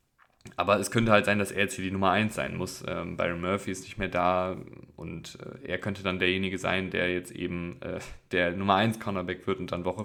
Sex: male